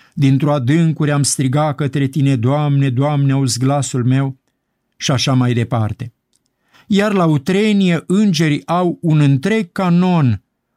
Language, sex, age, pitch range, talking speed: Romanian, male, 50-69, 135-180 Hz, 125 wpm